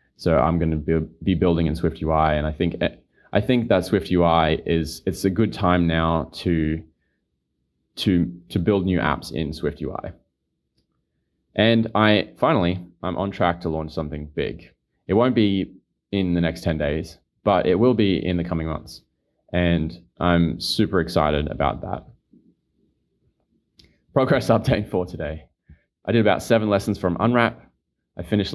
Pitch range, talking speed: 80-90 Hz, 155 wpm